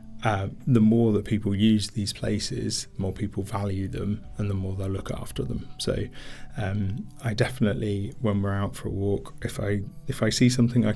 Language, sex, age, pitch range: English, male, 30-49, 105-125 Hz